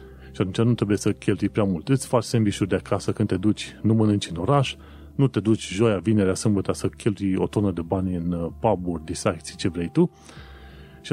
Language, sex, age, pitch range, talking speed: Romanian, male, 30-49, 85-115 Hz, 210 wpm